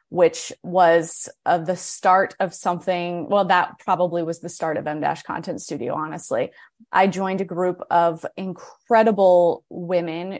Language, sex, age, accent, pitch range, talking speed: English, female, 20-39, American, 170-210 Hz, 140 wpm